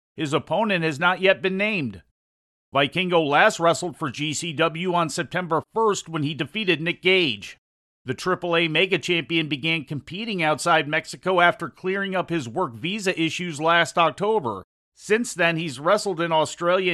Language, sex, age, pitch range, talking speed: English, male, 50-69, 155-185 Hz, 150 wpm